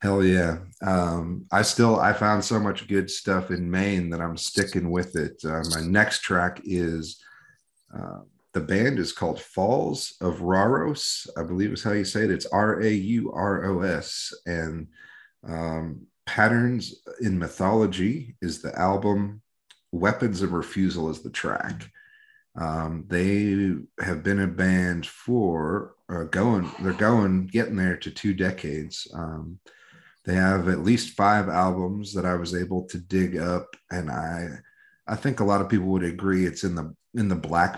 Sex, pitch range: male, 85-100 Hz